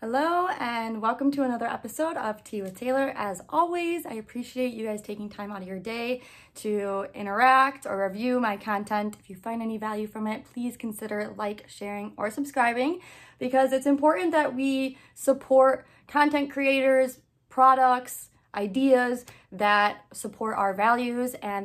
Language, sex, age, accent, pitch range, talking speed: English, female, 20-39, American, 215-265 Hz, 155 wpm